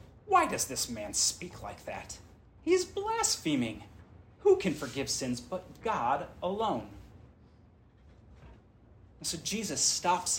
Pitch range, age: 100-165 Hz, 30-49